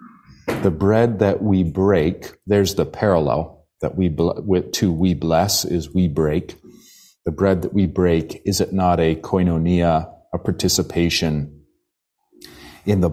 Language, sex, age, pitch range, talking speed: English, male, 40-59, 85-100 Hz, 135 wpm